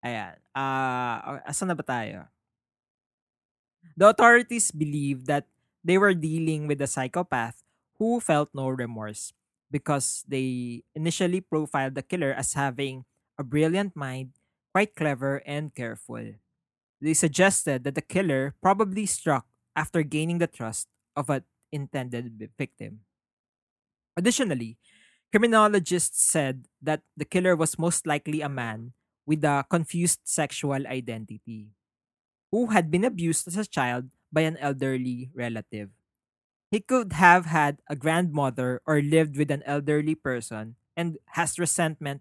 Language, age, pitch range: English, 20-39, 125-170 Hz